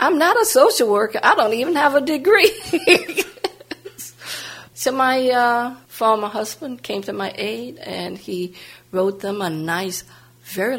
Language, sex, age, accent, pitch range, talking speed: English, female, 50-69, American, 175-235 Hz, 150 wpm